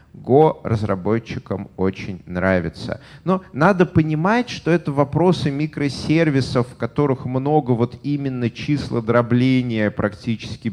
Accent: native